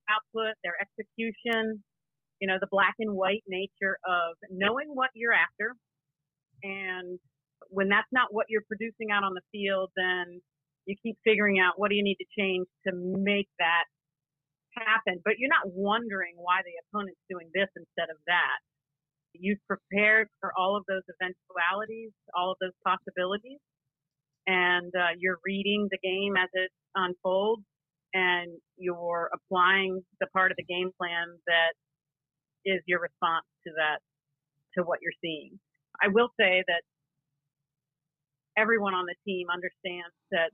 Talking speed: 150 wpm